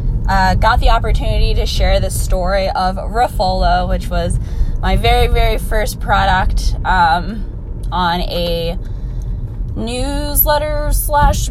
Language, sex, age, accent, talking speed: English, female, 10-29, American, 115 wpm